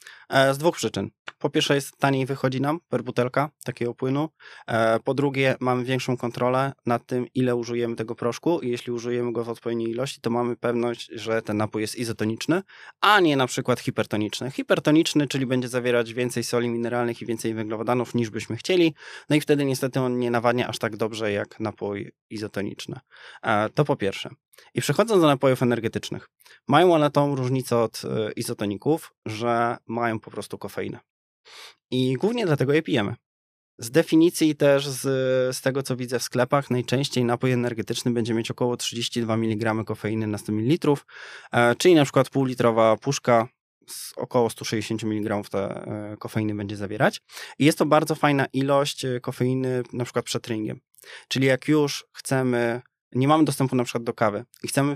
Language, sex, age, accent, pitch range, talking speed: Polish, male, 20-39, native, 115-135 Hz, 165 wpm